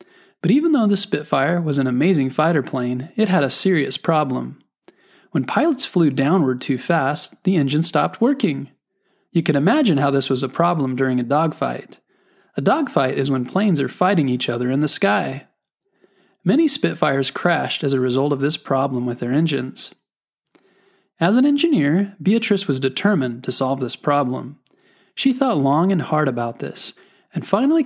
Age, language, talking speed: 20-39, English, 170 wpm